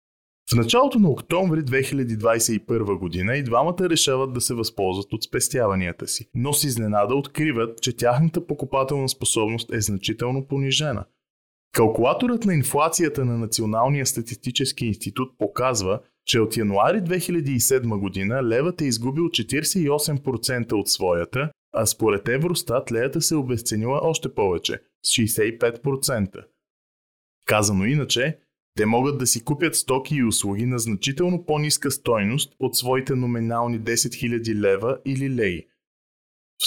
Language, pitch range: Bulgarian, 110-145 Hz